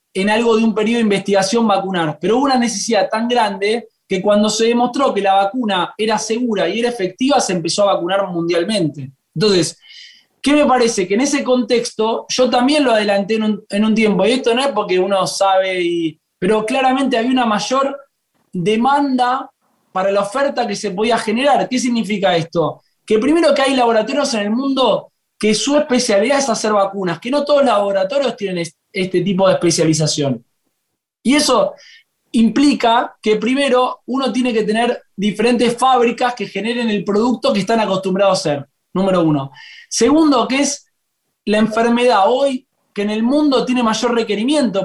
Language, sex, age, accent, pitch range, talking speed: Spanish, male, 20-39, Argentinian, 195-255 Hz, 175 wpm